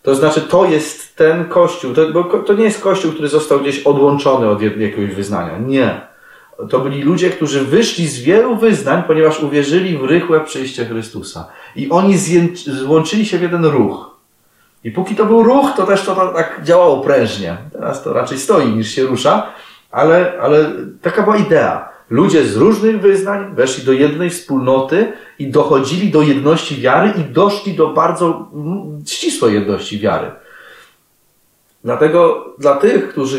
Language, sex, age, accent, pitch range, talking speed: Polish, male, 30-49, native, 130-185 Hz, 160 wpm